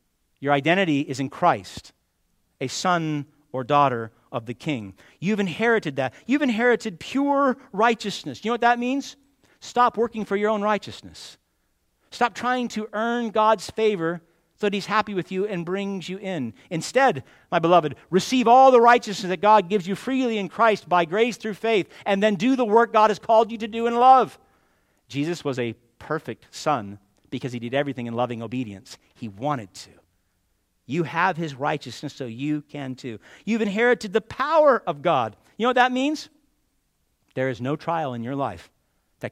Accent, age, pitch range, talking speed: American, 50-69, 145-235 Hz, 180 wpm